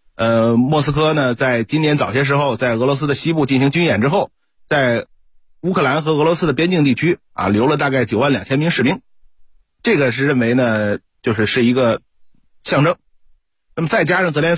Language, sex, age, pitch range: Chinese, male, 30-49, 120-165 Hz